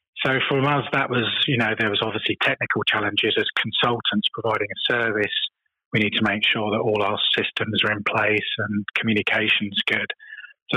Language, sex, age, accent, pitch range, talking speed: English, male, 30-49, British, 105-120 Hz, 185 wpm